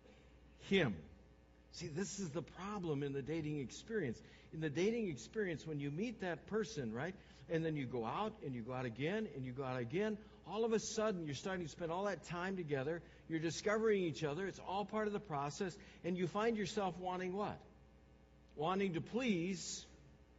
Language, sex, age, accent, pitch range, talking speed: English, male, 60-79, American, 140-205 Hz, 195 wpm